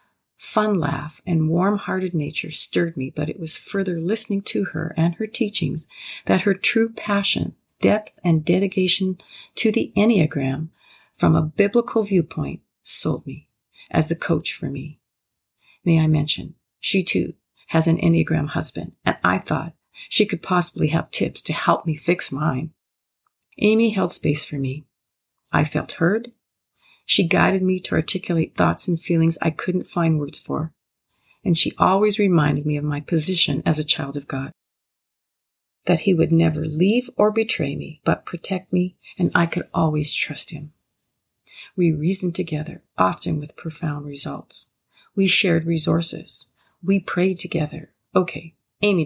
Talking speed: 155 wpm